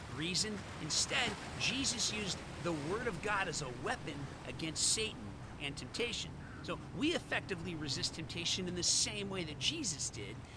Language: English